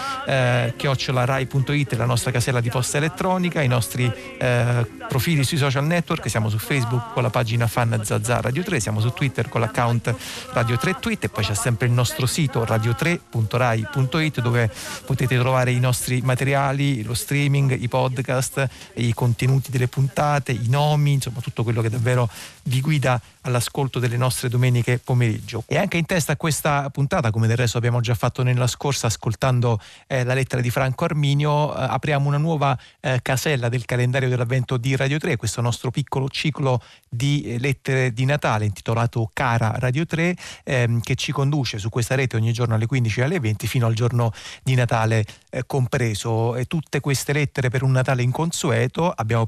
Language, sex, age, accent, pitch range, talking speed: Italian, male, 40-59, native, 120-140 Hz, 175 wpm